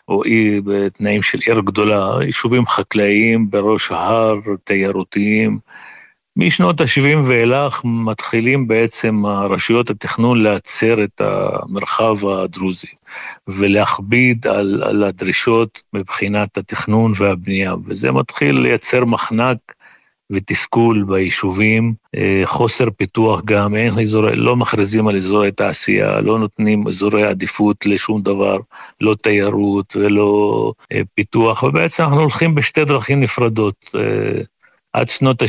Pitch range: 105-120 Hz